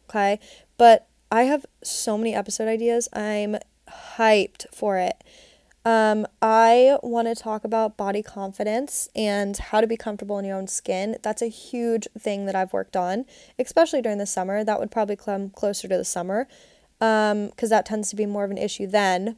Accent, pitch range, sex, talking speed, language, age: American, 205-235 Hz, female, 185 wpm, English, 20-39